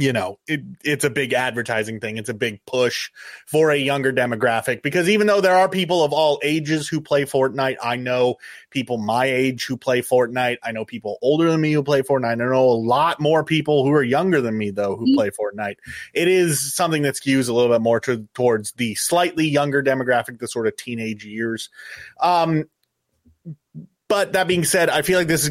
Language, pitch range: English, 115-150 Hz